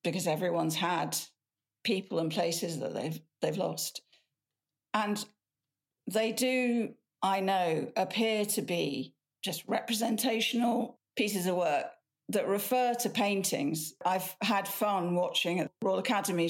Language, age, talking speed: English, 50-69, 125 wpm